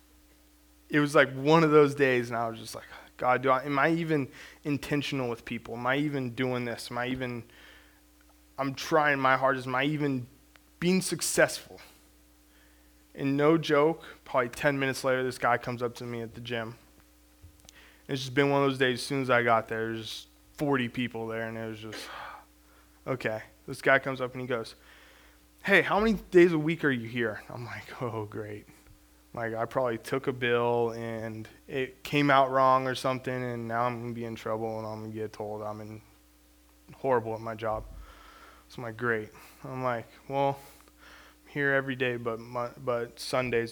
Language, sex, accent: English, male, American